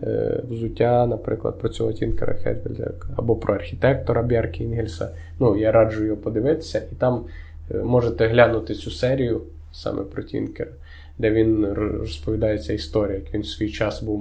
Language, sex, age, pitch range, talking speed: Ukrainian, male, 20-39, 100-115 Hz, 150 wpm